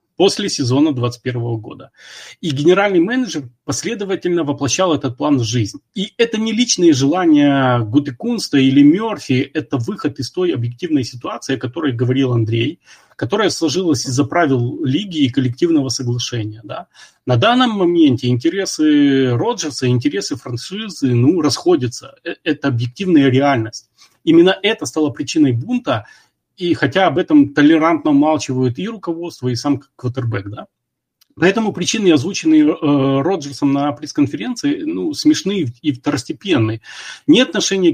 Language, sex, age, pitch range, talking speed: Russian, male, 30-49, 130-185 Hz, 130 wpm